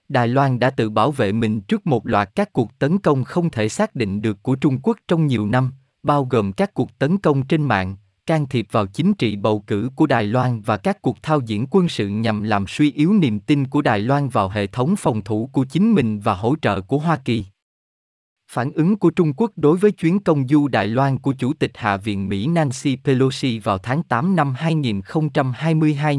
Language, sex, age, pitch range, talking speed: Vietnamese, male, 20-39, 110-160 Hz, 225 wpm